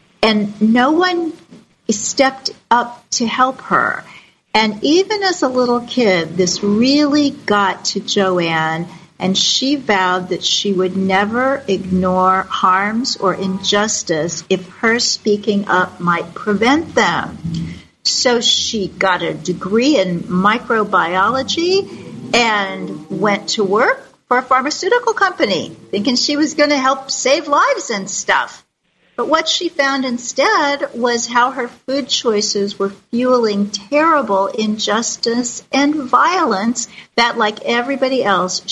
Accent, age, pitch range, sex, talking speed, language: American, 50-69, 195-260 Hz, female, 125 wpm, English